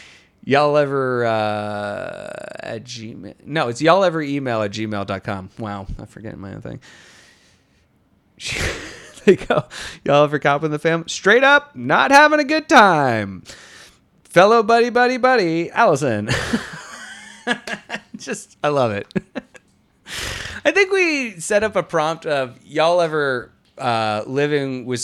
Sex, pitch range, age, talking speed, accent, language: male, 105-155 Hz, 30-49, 135 wpm, American, English